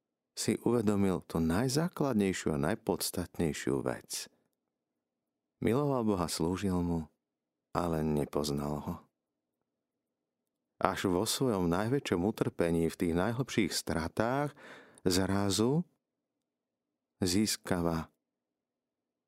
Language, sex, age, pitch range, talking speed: Slovak, male, 50-69, 75-95 Hz, 80 wpm